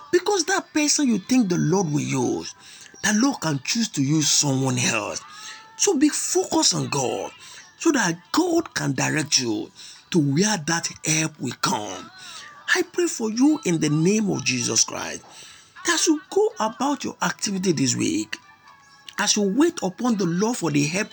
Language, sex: English, male